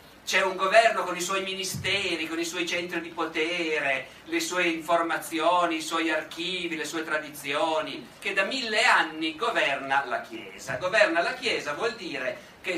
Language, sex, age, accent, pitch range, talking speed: Italian, male, 50-69, native, 155-195 Hz, 165 wpm